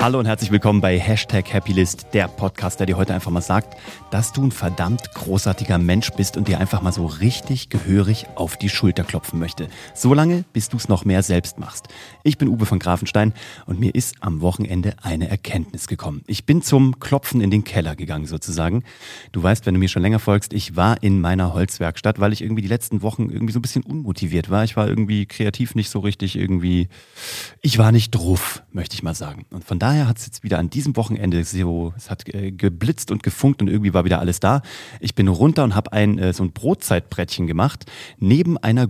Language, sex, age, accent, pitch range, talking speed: German, male, 30-49, German, 95-115 Hz, 215 wpm